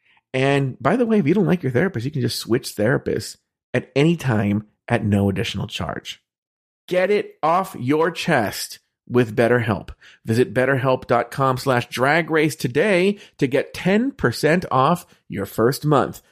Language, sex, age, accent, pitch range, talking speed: English, male, 40-59, American, 125-195 Hz, 150 wpm